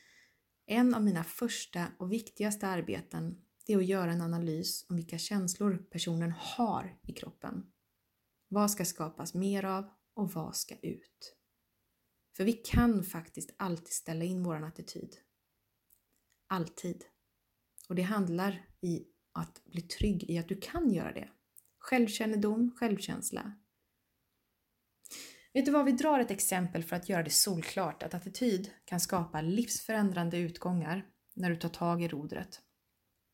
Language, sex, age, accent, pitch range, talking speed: Swedish, female, 30-49, native, 165-210 Hz, 140 wpm